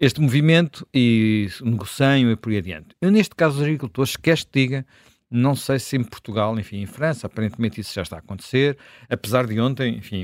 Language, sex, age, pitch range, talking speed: Portuguese, male, 50-69, 100-125 Hz, 200 wpm